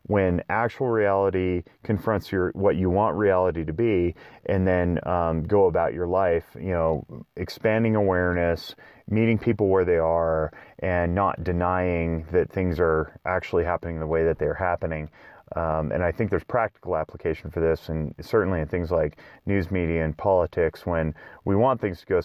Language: English